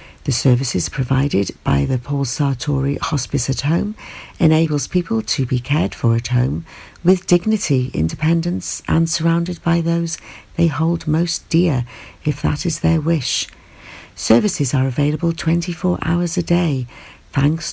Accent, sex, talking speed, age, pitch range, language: British, female, 140 wpm, 50-69, 130-170 Hz, English